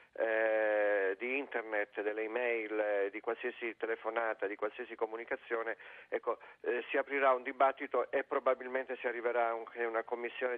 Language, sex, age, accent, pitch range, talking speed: Italian, male, 40-59, native, 120-145 Hz, 145 wpm